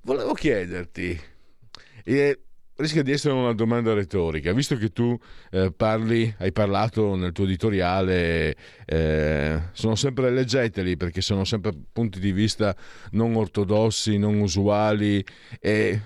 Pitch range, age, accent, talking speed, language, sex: 90-115 Hz, 50-69, native, 125 wpm, Italian, male